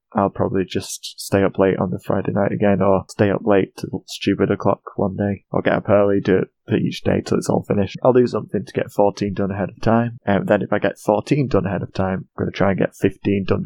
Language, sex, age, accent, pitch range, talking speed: English, male, 20-39, British, 95-110 Hz, 275 wpm